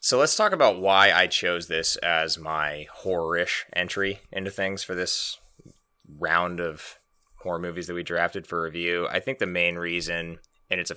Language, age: English, 20-39